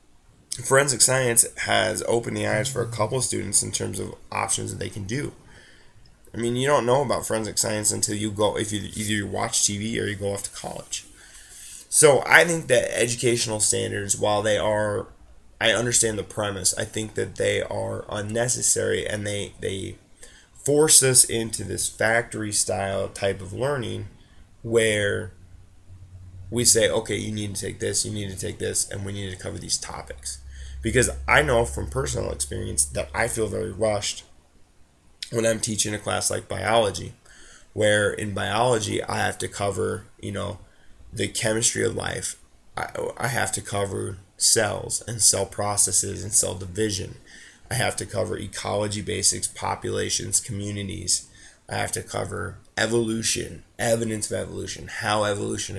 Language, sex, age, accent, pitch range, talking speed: English, male, 20-39, American, 100-115 Hz, 165 wpm